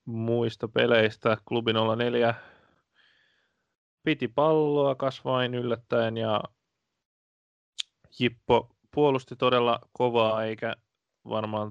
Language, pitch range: Finnish, 110-125 Hz